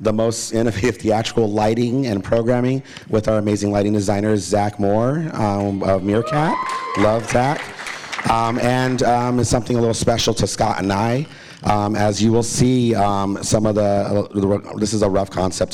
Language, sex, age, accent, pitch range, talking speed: English, male, 40-59, American, 100-120 Hz, 170 wpm